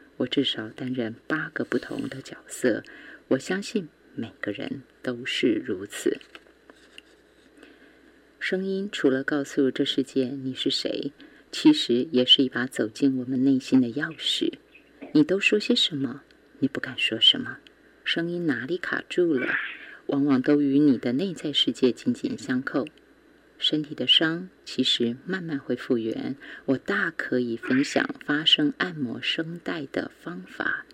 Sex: female